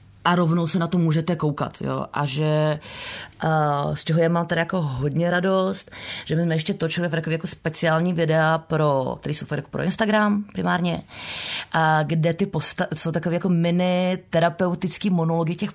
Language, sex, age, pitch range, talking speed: Czech, female, 30-49, 150-170 Hz, 170 wpm